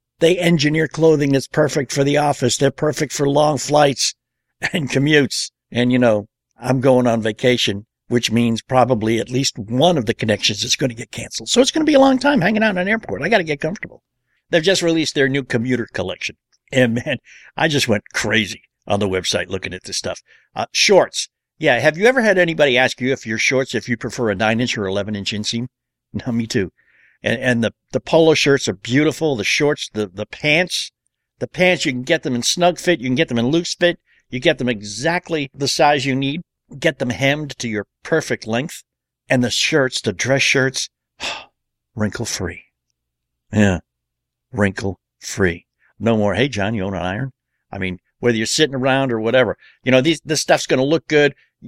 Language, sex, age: English, male, 60-79